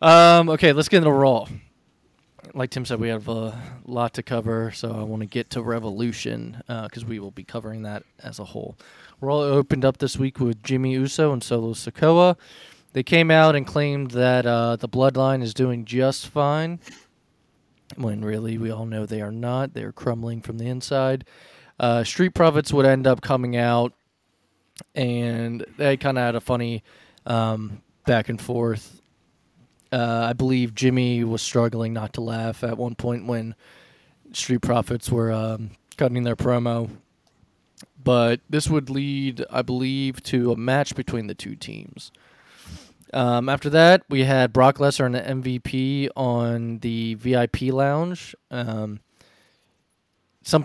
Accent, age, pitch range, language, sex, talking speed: American, 20-39, 115-135 Hz, English, male, 160 wpm